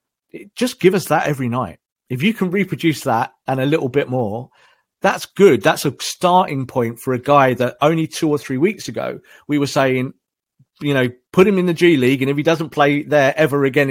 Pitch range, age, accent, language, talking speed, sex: 125-160 Hz, 40-59, British, English, 220 wpm, male